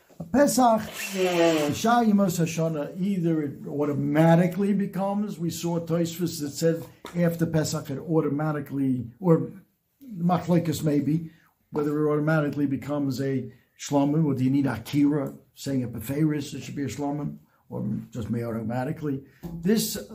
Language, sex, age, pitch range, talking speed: English, male, 60-79, 145-195 Hz, 125 wpm